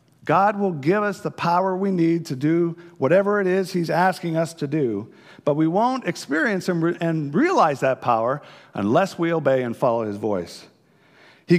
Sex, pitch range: male, 140-195 Hz